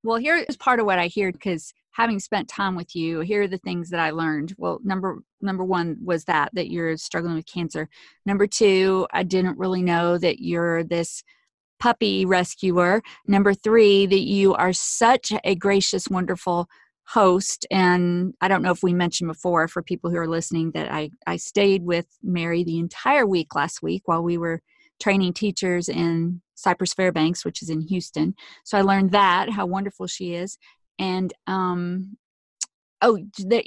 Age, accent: 40-59, American